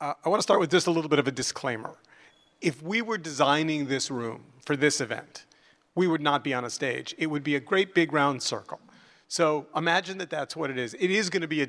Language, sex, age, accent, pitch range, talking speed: English, male, 40-59, American, 140-165 Hz, 255 wpm